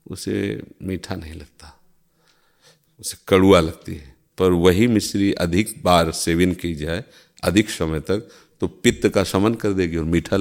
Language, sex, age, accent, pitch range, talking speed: Hindi, male, 40-59, native, 85-105 Hz, 155 wpm